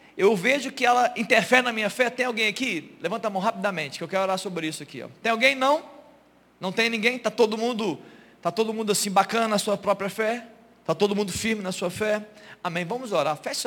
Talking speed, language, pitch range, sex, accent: 230 wpm, Portuguese, 160-205 Hz, male, Brazilian